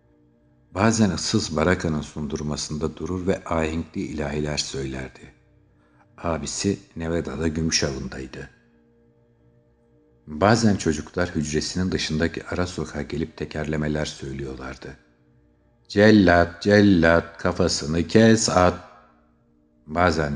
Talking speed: 85 wpm